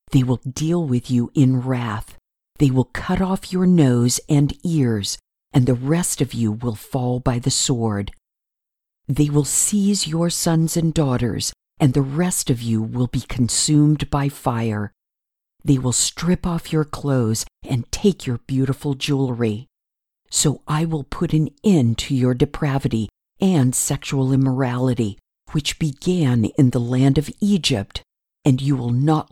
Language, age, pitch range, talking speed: English, 50-69, 120-160 Hz, 155 wpm